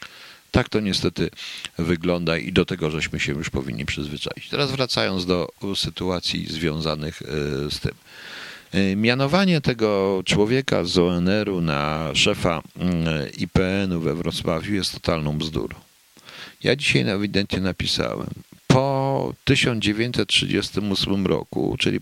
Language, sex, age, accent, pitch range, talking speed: Polish, male, 50-69, native, 85-105 Hz, 110 wpm